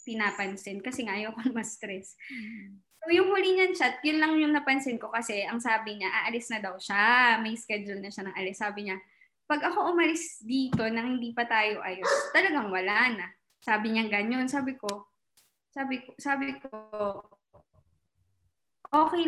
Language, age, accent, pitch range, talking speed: English, 20-39, Filipino, 215-320 Hz, 170 wpm